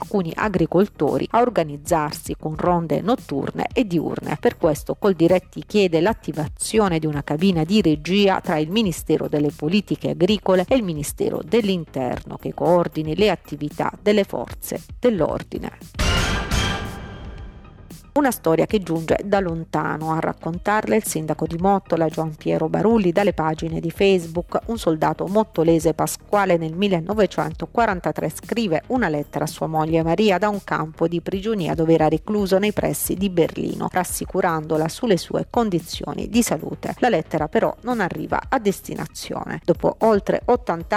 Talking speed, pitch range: 140 wpm, 160-210 Hz